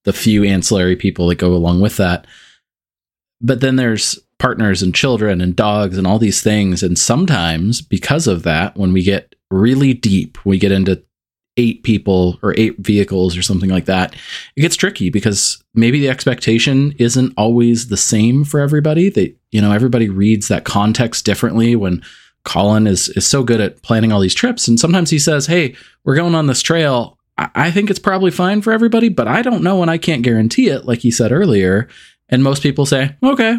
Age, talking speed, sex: 20-39, 195 wpm, male